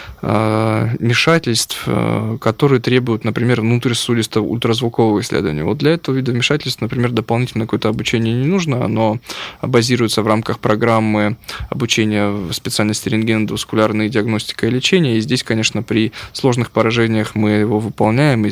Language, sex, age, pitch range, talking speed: Russian, male, 20-39, 105-125 Hz, 130 wpm